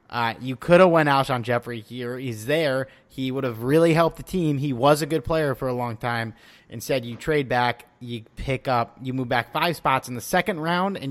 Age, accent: 30-49, American